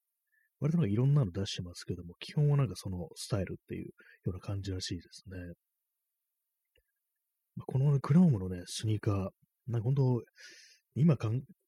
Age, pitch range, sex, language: 30-49, 95-135 Hz, male, Japanese